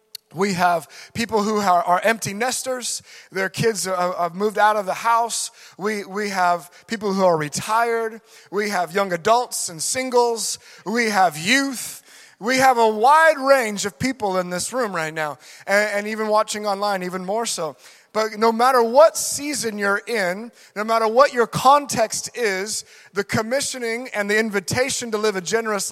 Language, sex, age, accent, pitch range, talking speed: English, male, 30-49, American, 200-245 Hz, 170 wpm